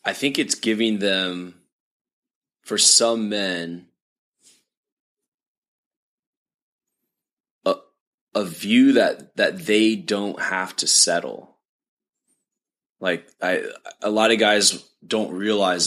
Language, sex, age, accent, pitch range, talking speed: English, male, 20-39, American, 90-105 Hz, 100 wpm